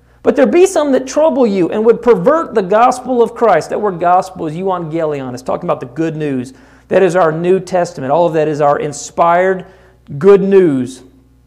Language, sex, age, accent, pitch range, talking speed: English, male, 40-59, American, 165-240 Hz, 200 wpm